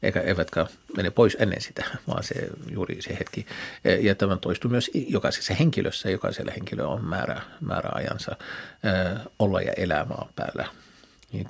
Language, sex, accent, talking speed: Finnish, male, native, 150 wpm